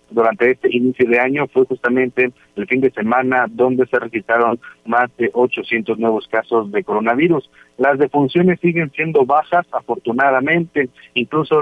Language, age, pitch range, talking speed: Spanish, 50-69, 120-140 Hz, 145 wpm